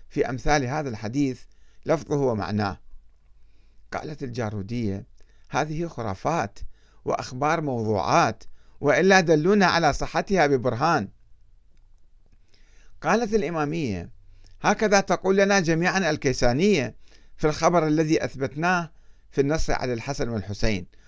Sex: male